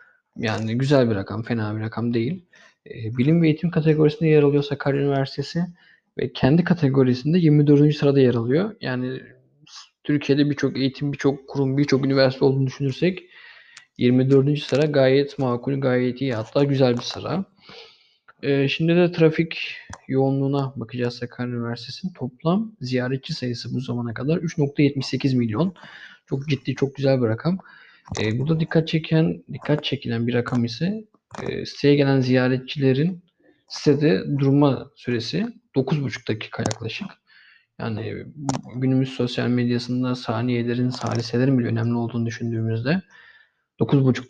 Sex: male